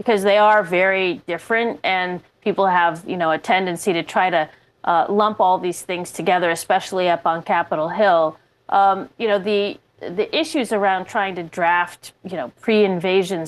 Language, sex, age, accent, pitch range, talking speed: English, female, 30-49, American, 170-205 Hz, 175 wpm